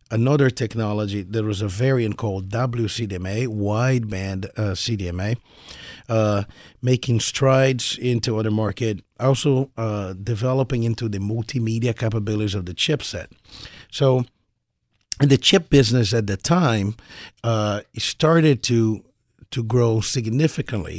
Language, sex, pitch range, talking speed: English, male, 105-130 Hz, 115 wpm